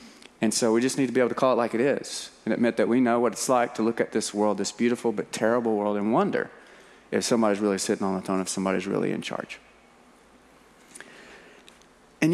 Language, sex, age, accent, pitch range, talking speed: English, male, 40-59, American, 115-145 Hz, 230 wpm